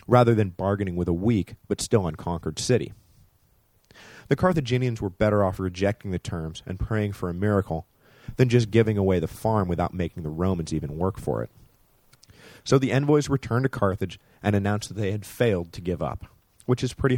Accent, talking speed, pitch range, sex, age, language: American, 190 wpm, 90-115 Hz, male, 30-49, English